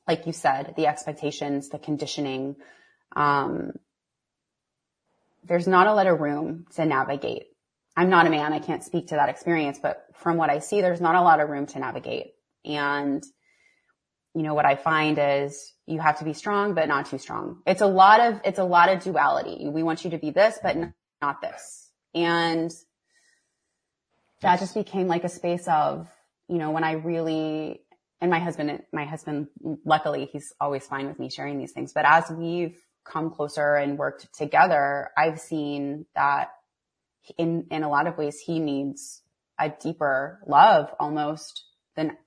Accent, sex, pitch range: American, female, 145-165 Hz